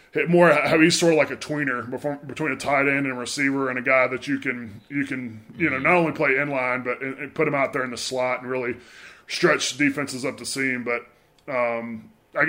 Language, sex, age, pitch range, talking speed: English, female, 20-39, 125-155 Hz, 245 wpm